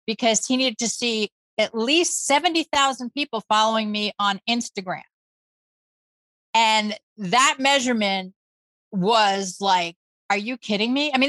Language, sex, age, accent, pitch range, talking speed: English, female, 30-49, American, 210-285 Hz, 130 wpm